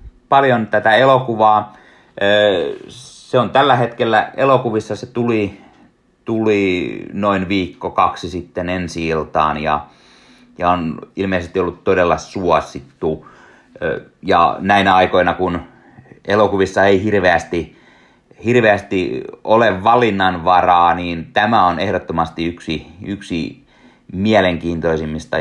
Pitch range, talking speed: 85-115 Hz, 90 wpm